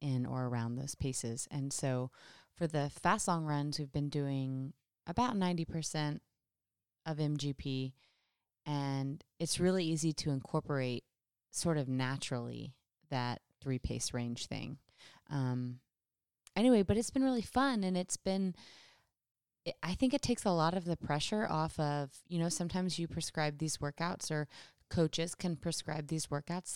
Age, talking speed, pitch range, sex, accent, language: 20-39, 150 wpm, 130-170 Hz, female, American, English